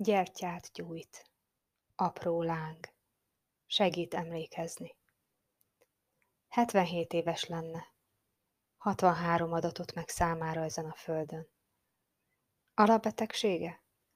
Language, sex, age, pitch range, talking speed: Hungarian, female, 30-49, 165-195 Hz, 70 wpm